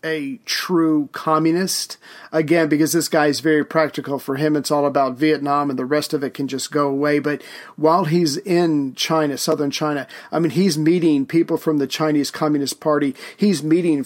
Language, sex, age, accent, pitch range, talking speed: English, male, 40-59, American, 145-165 Hz, 190 wpm